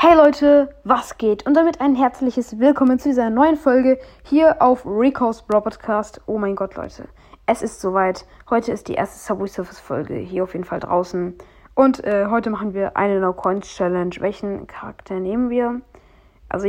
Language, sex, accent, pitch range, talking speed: German, female, German, 195-240 Hz, 185 wpm